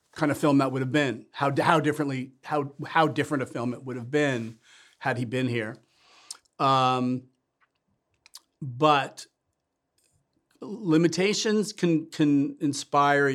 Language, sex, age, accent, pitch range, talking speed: English, male, 40-59, American, 125-145 Hz, 130 wpm